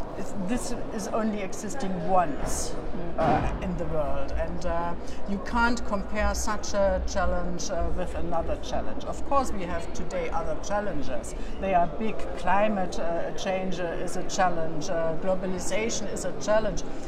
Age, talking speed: 60-79, 150 wpm